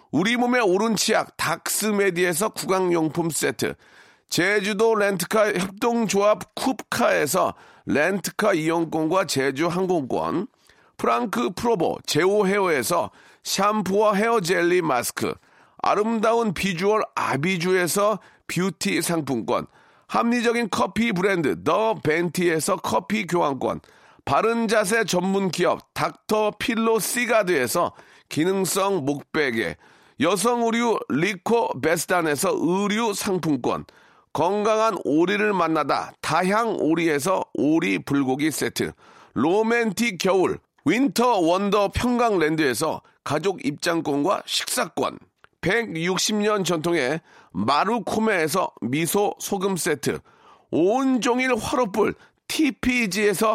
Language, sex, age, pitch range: Korean, male, 40-59, 180-225 Hz